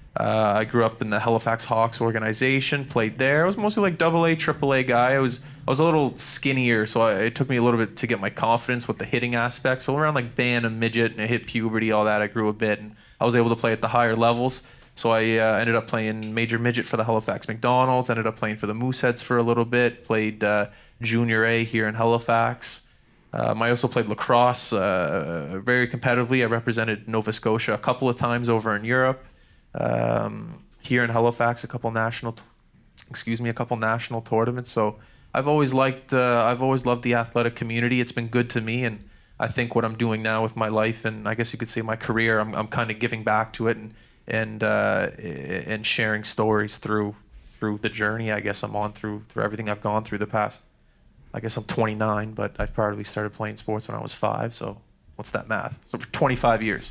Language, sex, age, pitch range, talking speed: English, male, 20-39, 110-125 Hz, 230 wpm